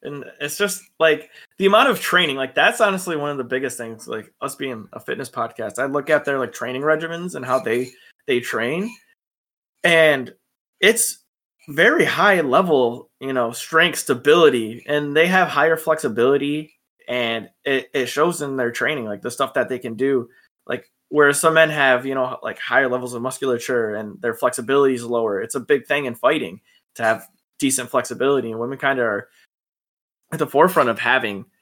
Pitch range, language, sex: 125-155 Hz, English, male